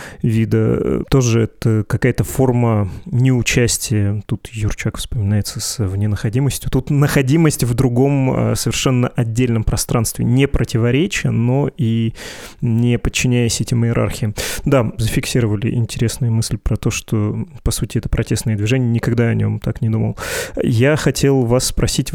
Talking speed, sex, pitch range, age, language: 130 wpm, male, 115-130 Hz, 20-39, Russian